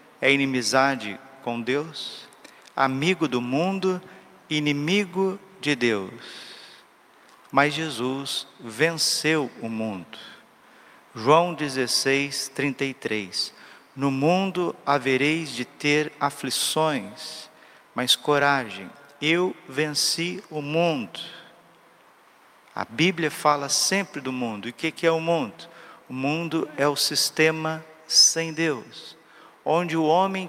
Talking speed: 100 wpm